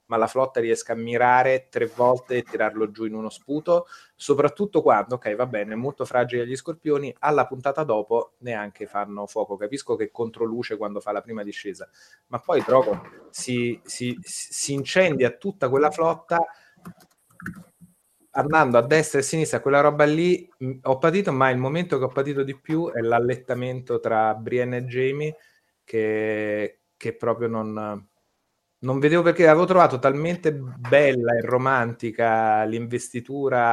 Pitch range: 110-140 Hz